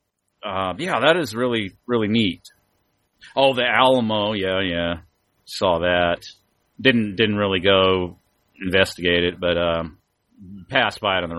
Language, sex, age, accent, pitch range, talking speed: English, male, 40-59, American, 90-120 Hz, 155 wpm